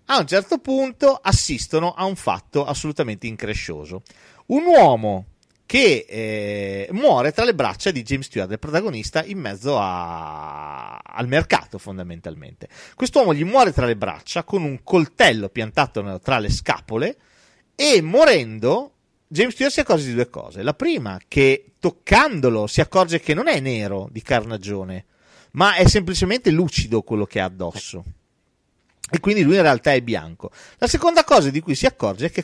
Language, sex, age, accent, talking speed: Italian, male, 40-59, native, 160 wpm